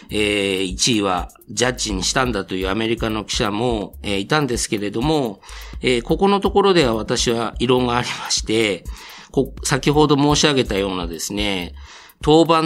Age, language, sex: 50-69, Japanese, male